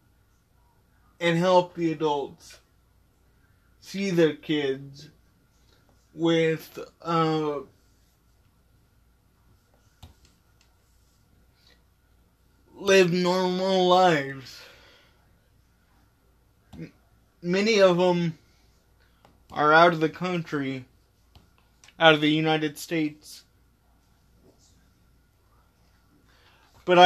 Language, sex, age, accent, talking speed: English, male, 20-39, American, 60 wpm